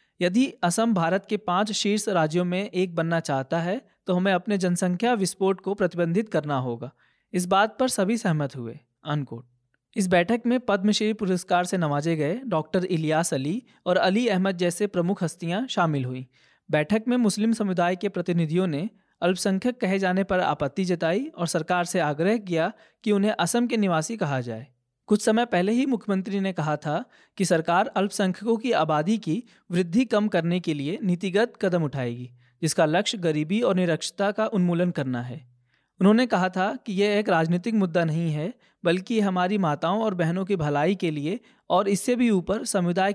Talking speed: 175 wpm